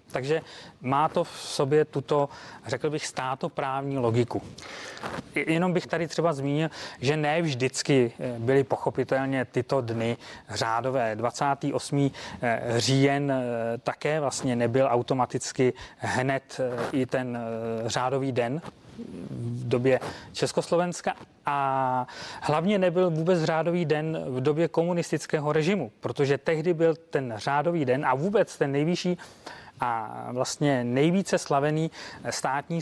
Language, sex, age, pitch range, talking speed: Czech, male, 30-49, 130-155 Hz, 115 wpm